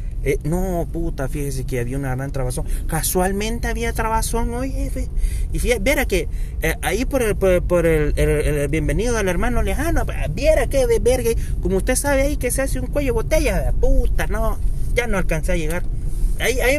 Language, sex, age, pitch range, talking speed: Spanish, male, 30-49, 125-170 Hz, 200 wpm